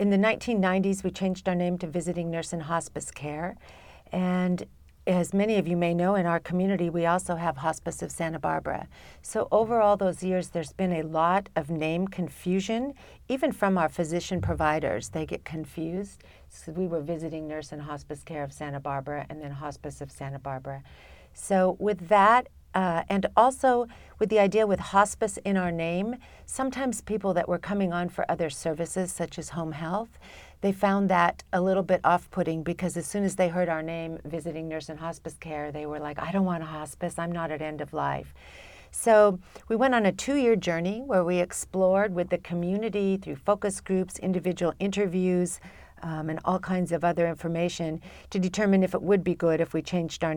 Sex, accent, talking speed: female, American, 195 wpm